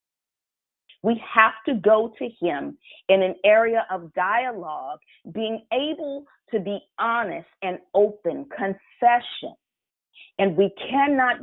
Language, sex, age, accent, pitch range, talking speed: English, female, 40-59, American, 195-250 Hz, 115 wpm